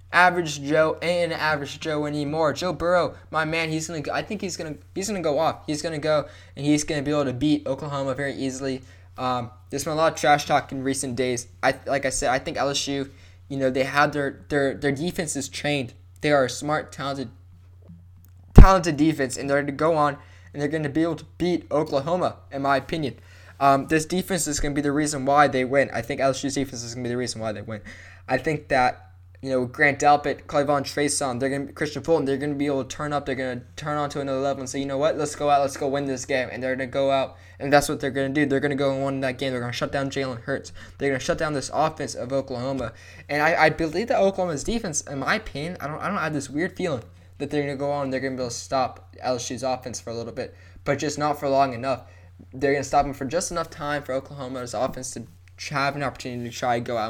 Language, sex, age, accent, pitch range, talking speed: English, male, 10-29, American, 125-150 Hz, 260 wpm